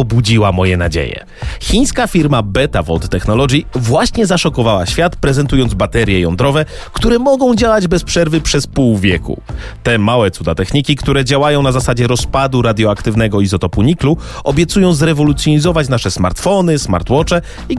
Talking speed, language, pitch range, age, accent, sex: 135 wpm, Polish, 100-165 Hz, 30-49, native, male